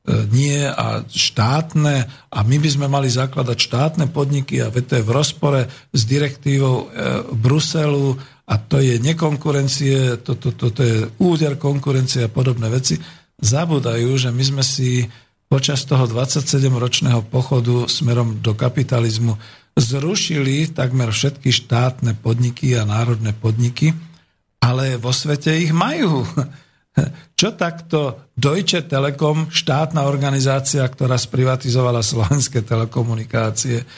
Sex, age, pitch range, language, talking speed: male, 50-69, 120-150 Hz, Slovak, 120 wpm